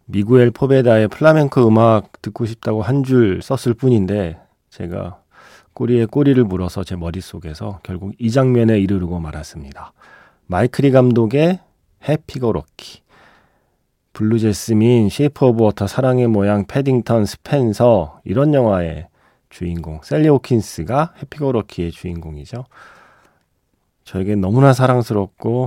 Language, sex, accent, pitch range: Korean, male, native, 95-135 Hz